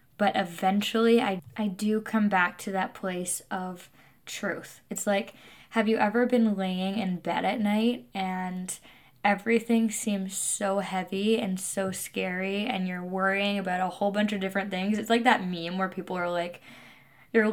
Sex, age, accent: female, 10-29, American